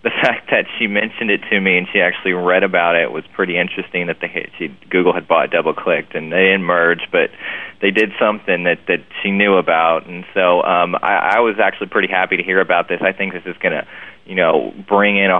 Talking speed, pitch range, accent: 240 wpm, 90-100 Hz, American